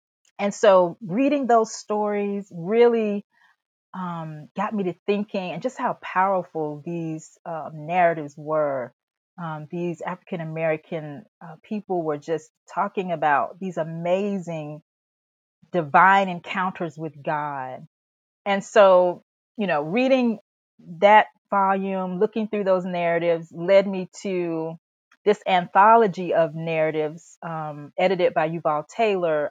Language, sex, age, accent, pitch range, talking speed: English, female, 30-49, American, 155-200 Hz, 120 wpm